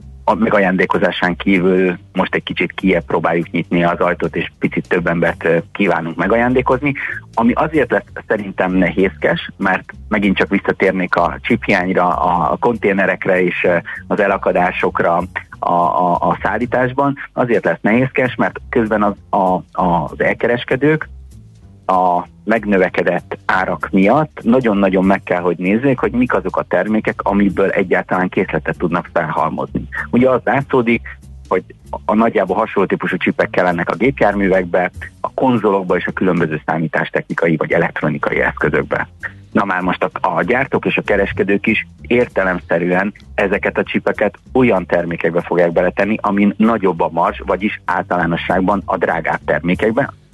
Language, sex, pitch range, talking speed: Hungarian, male, 85-110 Hz, 130 wpm